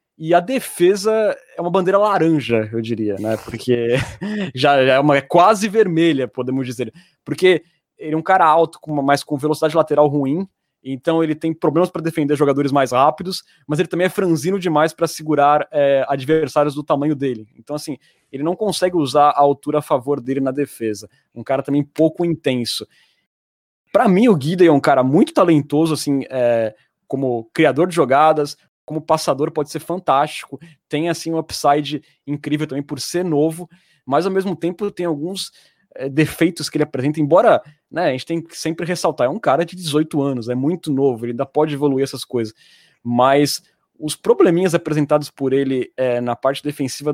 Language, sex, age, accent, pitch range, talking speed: Portuguese, male, 20-39, Brazilian, 135-165 Hz, 180 wpm